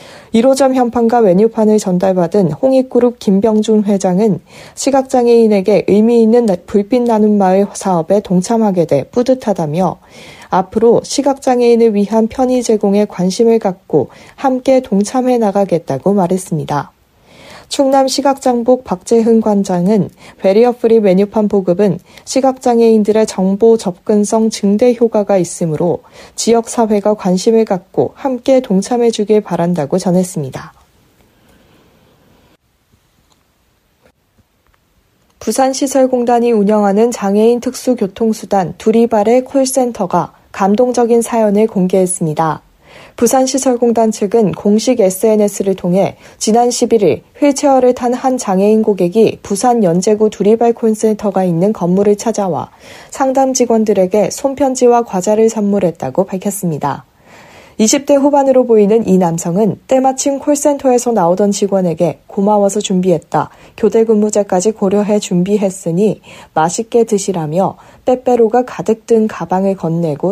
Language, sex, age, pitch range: Korean, female, 40-59, 190-240 Hz